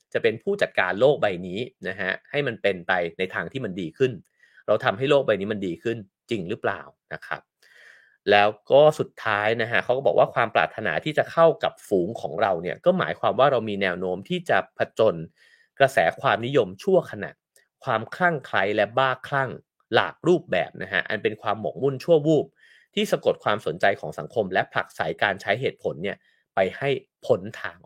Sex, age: male, 30-49